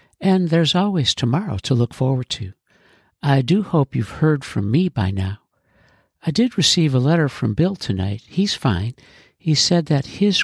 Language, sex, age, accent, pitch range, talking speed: English, male, 60-79, American, 115-155 Hz, 180 wpm